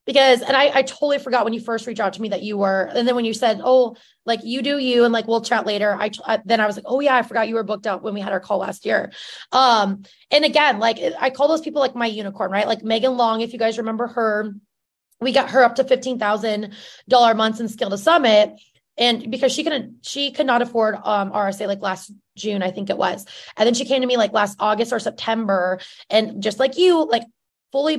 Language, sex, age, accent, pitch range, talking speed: English, female, 20-39, American, 215-260 Hz, 255 wpm